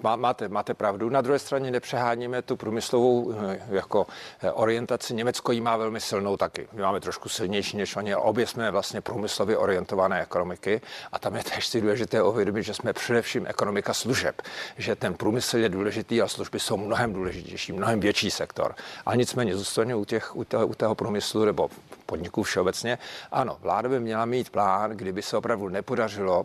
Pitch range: 105-120 Hz